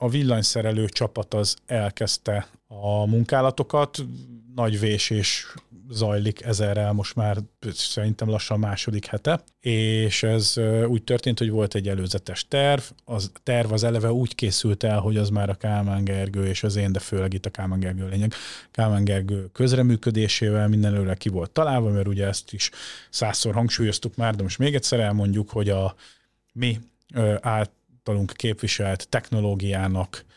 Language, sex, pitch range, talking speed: Hungarian, male, 100-120 Hz, 145 wpm